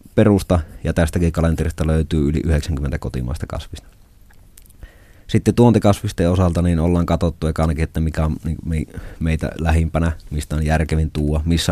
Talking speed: 135 wpm